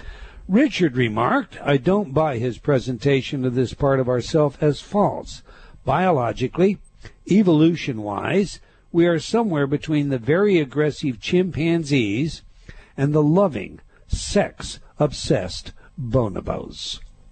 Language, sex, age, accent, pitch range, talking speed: English, male, 60-79, American, 130-170 Hz, 100 wpm